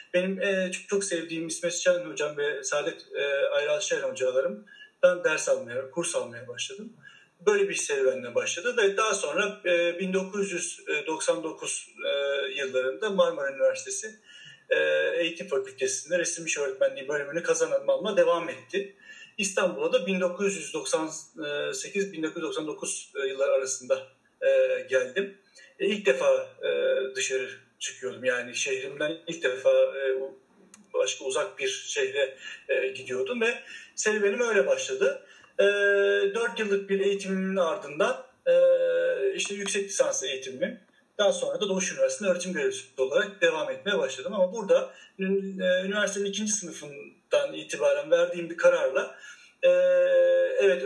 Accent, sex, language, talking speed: native, male, Turkish, 105 wpm